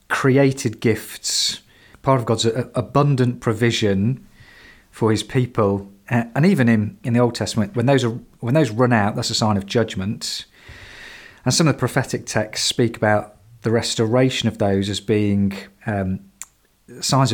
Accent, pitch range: British, 105-125 Hz